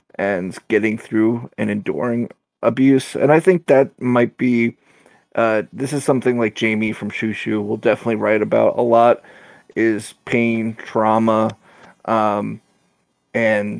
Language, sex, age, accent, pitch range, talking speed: English, male, 30-49, American, 110-120 Hz, 135 wpm